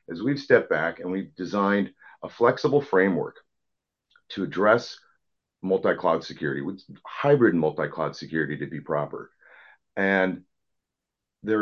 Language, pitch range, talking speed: English, 85-115 Hz, 120 wpm